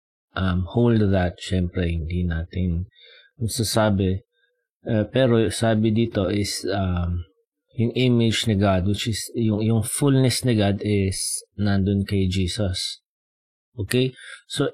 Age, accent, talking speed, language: 30-49, native, 120 wpm, Filipino